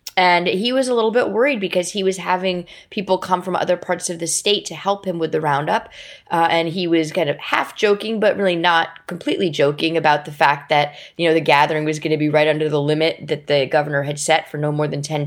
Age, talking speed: 20-39, 250 wpm